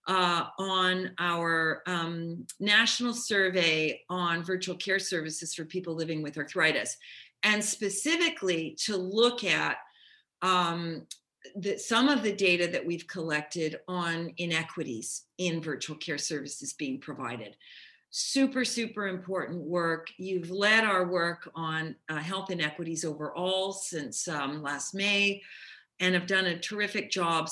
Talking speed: 130 wpm